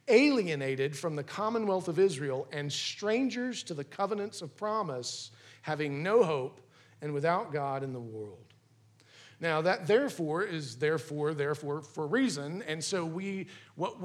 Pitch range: 140-195 Hz